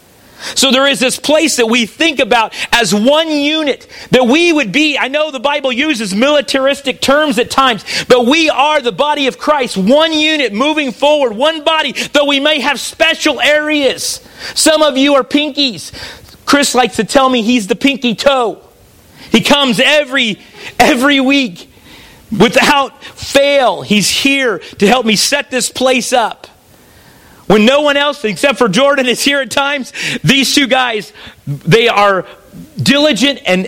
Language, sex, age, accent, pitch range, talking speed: English, male, 40-59, American, 225-285 Hz, 165 wpm